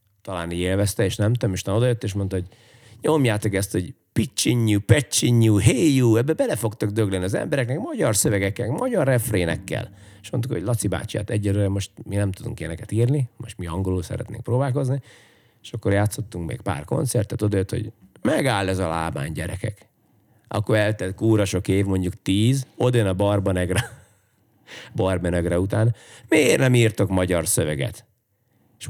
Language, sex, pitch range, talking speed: Hungarian, male, 95-120 Hz, 155 wpm